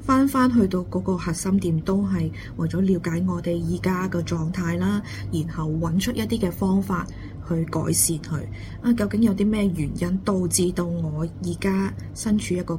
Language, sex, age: Chinese, female, 20-39